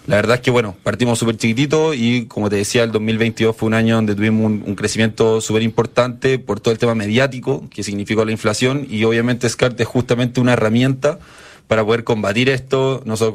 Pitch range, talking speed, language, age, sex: 110-125 Hz, 200 wpm, Spanish, 20-39, male